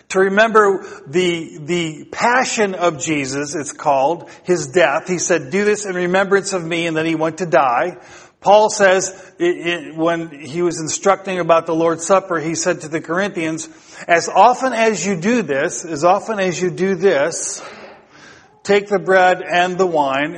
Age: 50-69